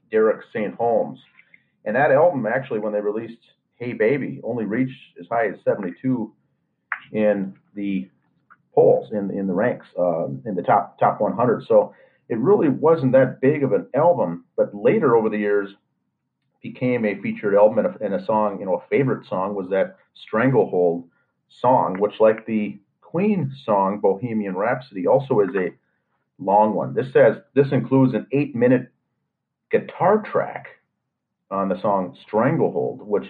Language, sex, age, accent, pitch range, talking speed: English, male, 40-59, American, 105-135 Hz, 160 wpm